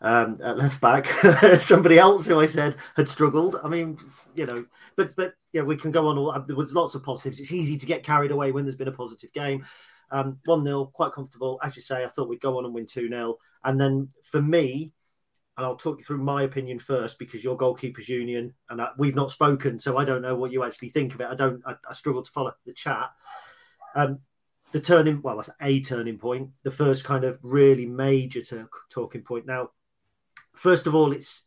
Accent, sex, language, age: British, male, English, 40-59